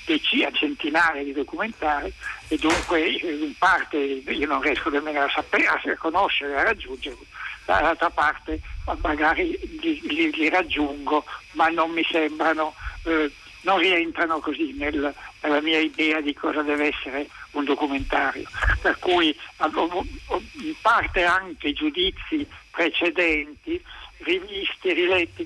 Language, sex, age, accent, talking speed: Italian, male, 60-79, native, 125 wpm